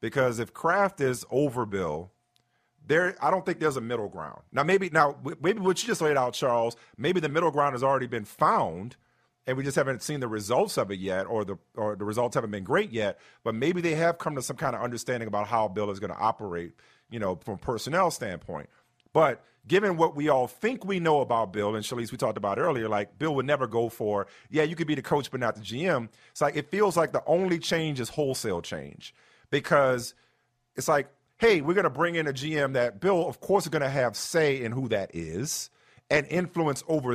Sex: male